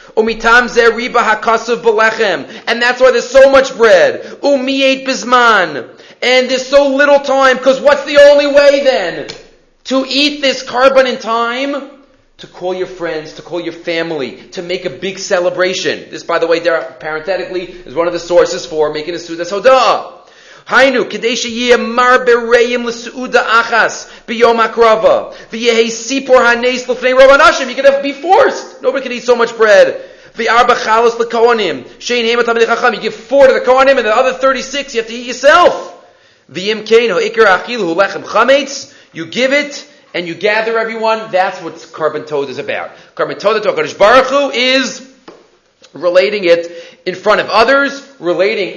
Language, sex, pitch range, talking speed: English, male, 190-270 Hz, 160 wpm